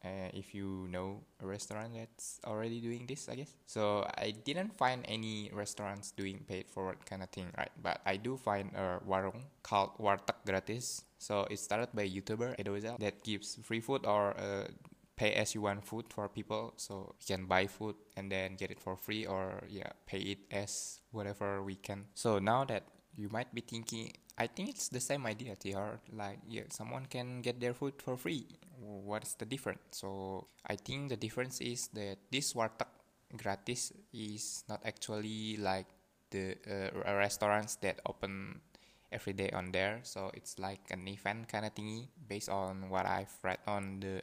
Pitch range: 95-110 Hz